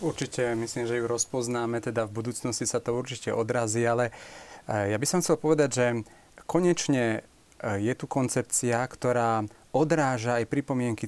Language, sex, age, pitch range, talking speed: Slovak, male, 40-59, 115-135 Hz, 145 wpm